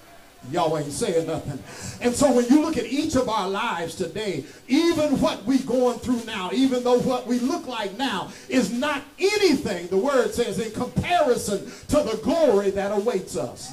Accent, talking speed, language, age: American, 185 wpm, English, 50-69